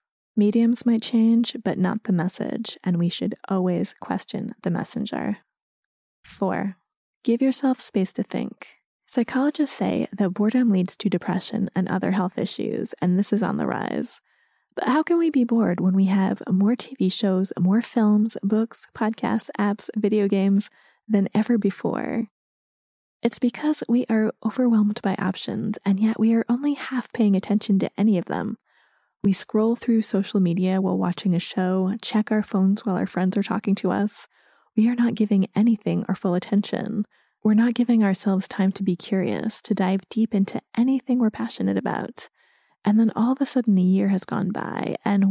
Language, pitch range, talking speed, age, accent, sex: English, 195-230 Hz, 175 wpm, 20-39, American, female